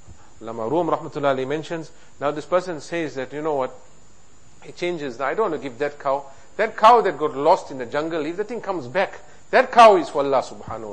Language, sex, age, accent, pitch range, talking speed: English, male, 50-69, Indian, 140-185 Hz, 220 wpm